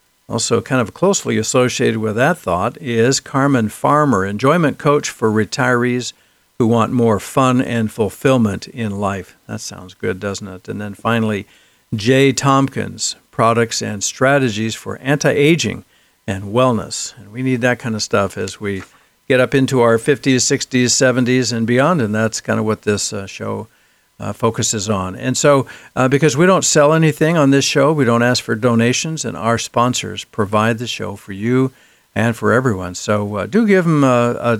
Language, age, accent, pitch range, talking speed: English, 60-79, American, 110-135 Hz, 175 wpm